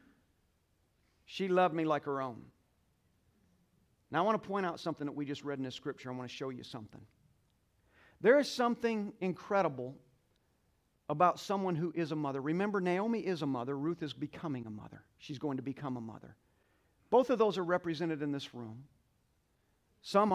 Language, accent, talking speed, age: English, American, 180 wpm, 50-69